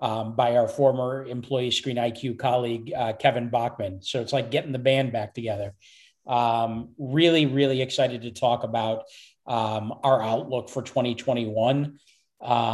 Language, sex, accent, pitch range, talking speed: English, male, American, 115-135 Hz, 145 wpm